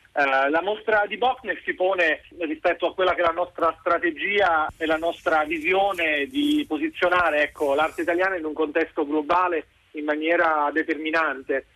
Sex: male